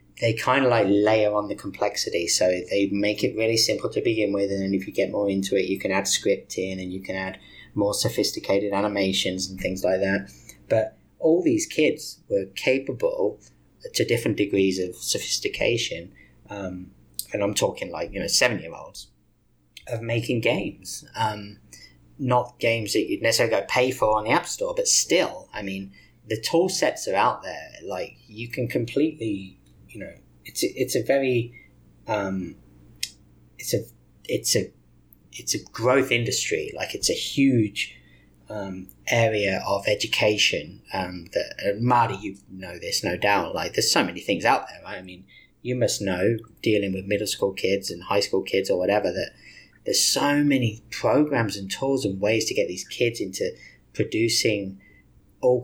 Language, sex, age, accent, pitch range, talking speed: English, male, 20-39, British, 95-120 Hz, 175 wpm